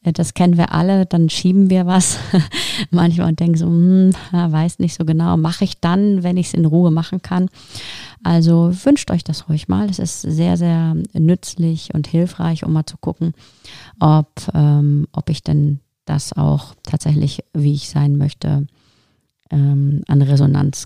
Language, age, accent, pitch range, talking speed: German, 30-49, German, 145-170 Hz, 165 wpm